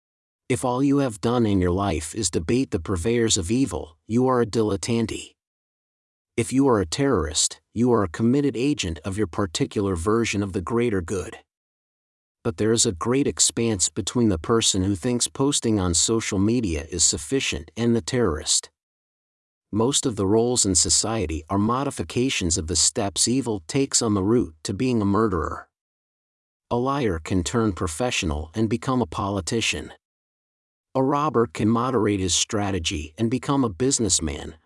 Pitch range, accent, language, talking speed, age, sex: 95-125 Hz, American, English, 165 wpm, 50-69, male